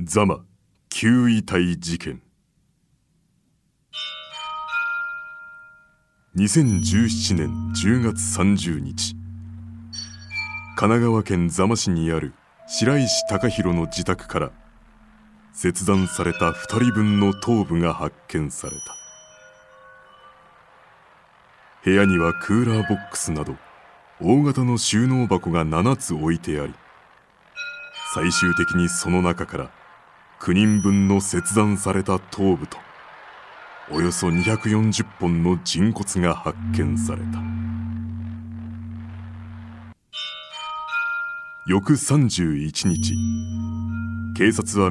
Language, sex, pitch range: Japanese, male, 90-120 Hz